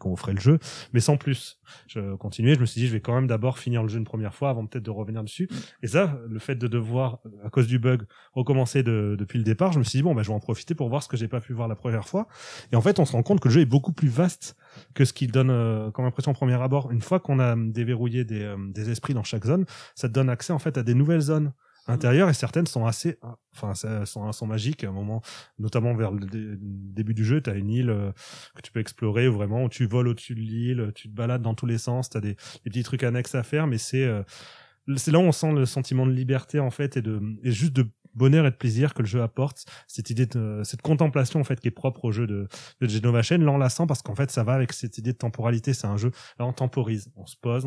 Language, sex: French, male